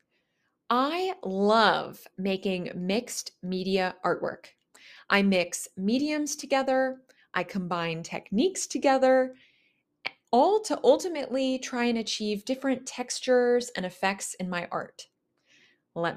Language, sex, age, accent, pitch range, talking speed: English, female, 20-39, American, 200-265 Hz, 105 wpm